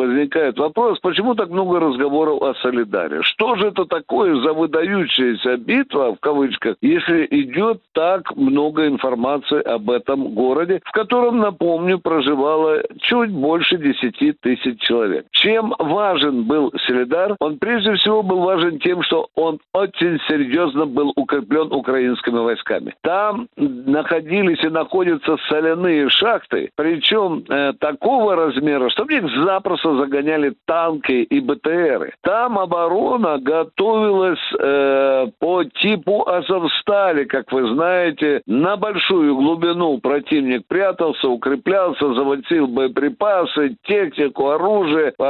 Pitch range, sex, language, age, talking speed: 145-210 Hz, male, Russian, 60-79, 120 wpm